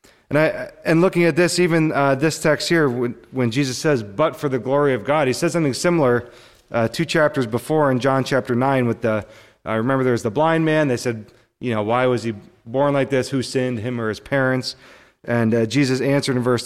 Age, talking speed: 30-49, 230 wpm